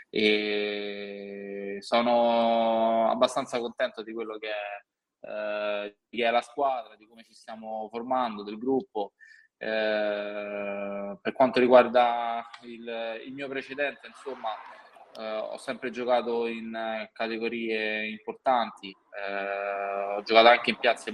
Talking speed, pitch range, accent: 120 wpm, 105-120 Hz, native